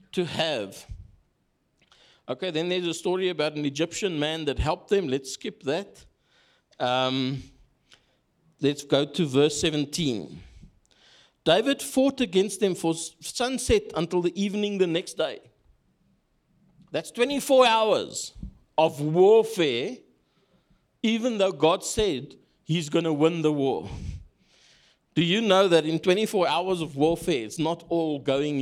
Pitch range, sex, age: 160-210 Hz, male, 50-69